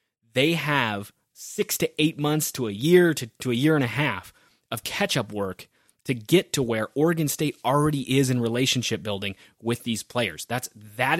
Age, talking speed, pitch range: 20-39, 190 wpm, 105-145 Hz